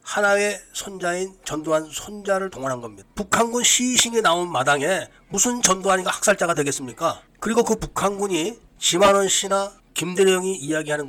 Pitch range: 170-215 Hz